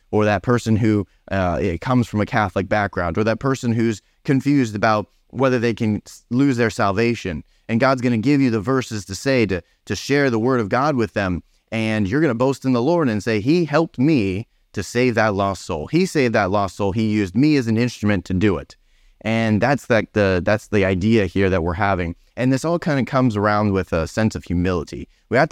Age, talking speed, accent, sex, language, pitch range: 30-49, 225 wpm, American, male, English, 95-120 Hz